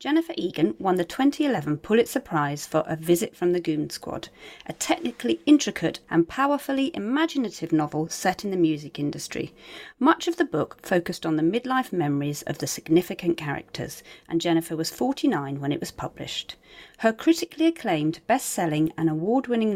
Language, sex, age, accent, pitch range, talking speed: English, female, 40-59, British, 160-245 Hz, 160 wpm